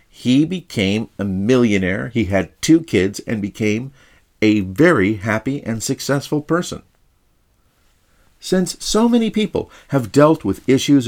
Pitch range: 100-145 Hz